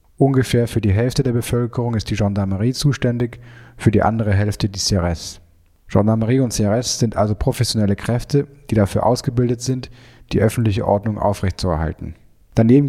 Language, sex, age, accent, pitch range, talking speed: French, male, 10-29, German, 100-120 Hz, 150 wpm